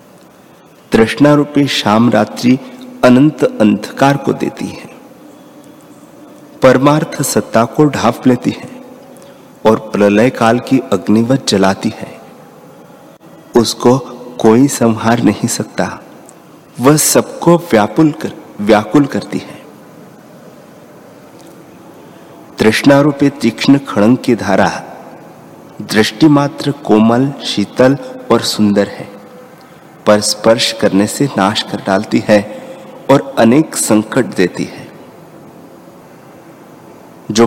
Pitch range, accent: 110-140 Hz, native